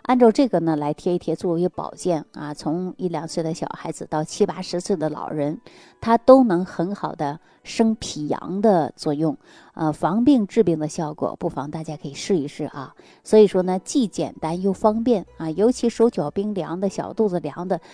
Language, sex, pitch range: Chinese, female, 155-210 Hz